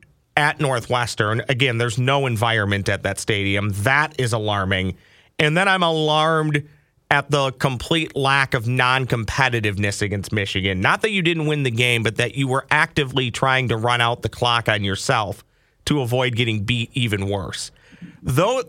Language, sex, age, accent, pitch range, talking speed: English, male, 40-59, American, 120-155 Hz, 165 wpm